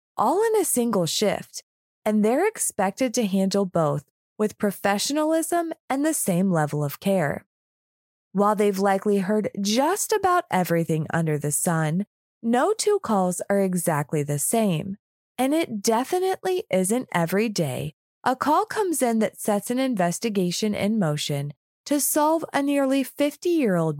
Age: 20-39